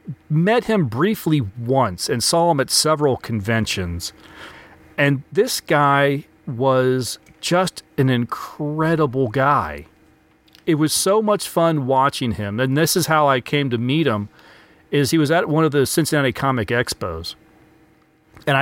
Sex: male